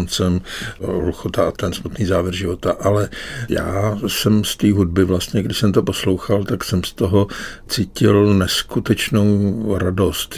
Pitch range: 95-105 Hz